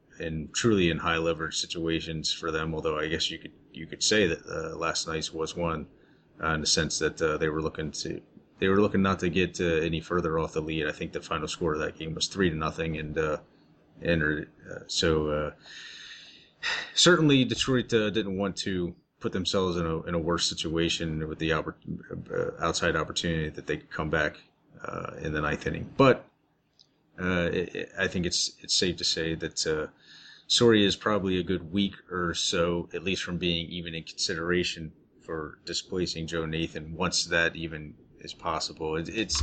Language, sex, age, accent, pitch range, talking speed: English, male, 30-49, American, 80-90 Hz, 195 wpm